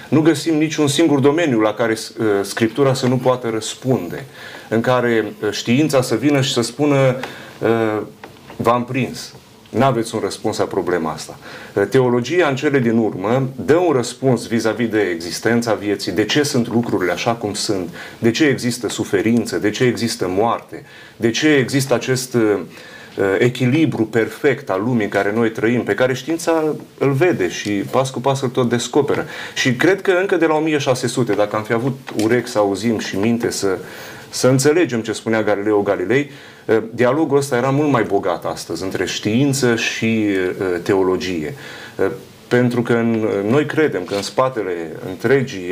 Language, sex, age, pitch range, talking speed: Romanian, male, 30-49, 110-135 Hz, 160 wpm